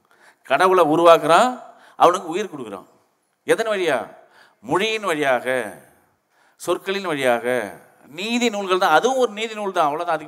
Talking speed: 110 wpm